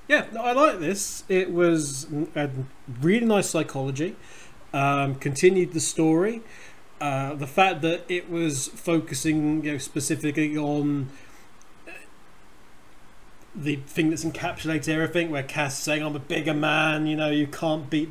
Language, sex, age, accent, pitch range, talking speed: English, male, 30-49, British, 150-170 Hz, 140 wpm